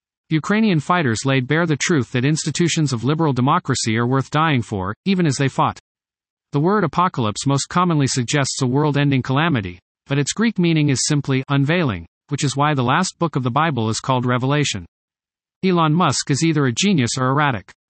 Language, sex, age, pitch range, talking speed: English, male, 50-69, 125-165 Hz, 185 wpm